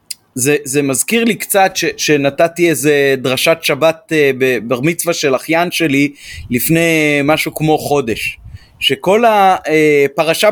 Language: Hebrew